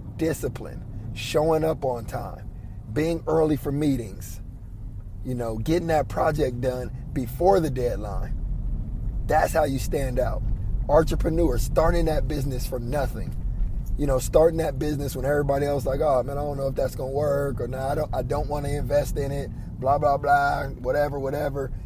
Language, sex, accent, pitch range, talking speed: English, male, American, 120-150 Hz, 180 wpm